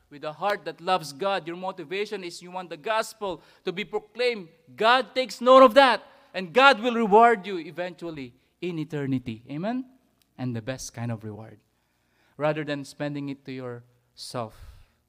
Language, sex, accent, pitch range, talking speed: English, male, Filipino, 125-175 Hz, 165 wpm